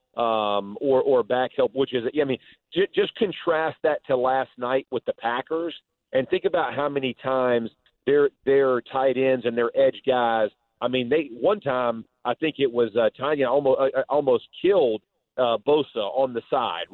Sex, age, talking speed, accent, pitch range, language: male, 40-59, 195 wpm, American, 125-145 Hz, English